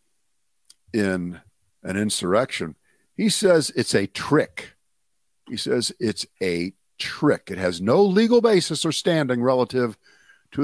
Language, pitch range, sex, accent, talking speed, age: English, 95-120 Hz, male, American, 125 wpm, 50-69